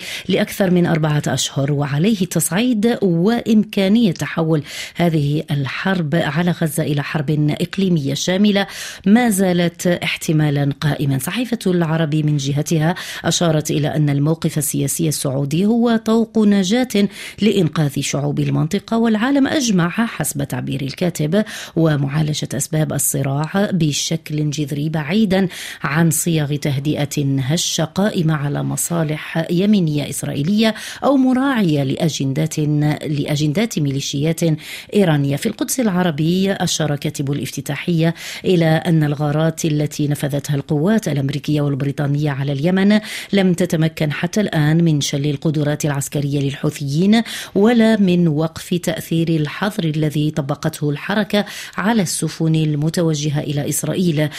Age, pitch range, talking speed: 30-49, 150-190 Hz, 110 wpm